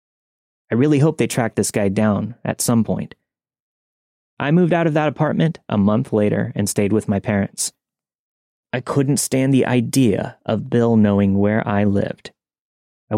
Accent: American